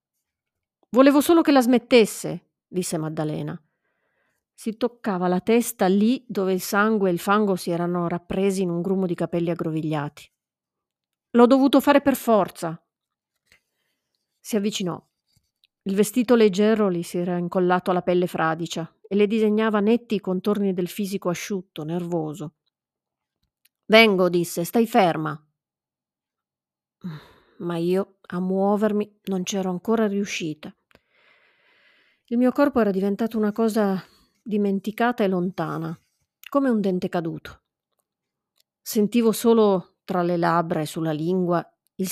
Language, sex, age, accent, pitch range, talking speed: Italian, female, 40-59, native, 175-220 Hz, 125 wpm